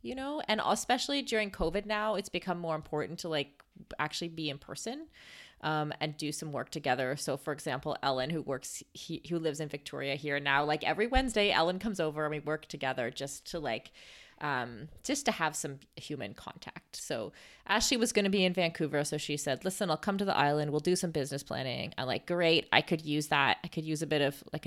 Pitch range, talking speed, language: 140-190 Hz, 220 wpm, English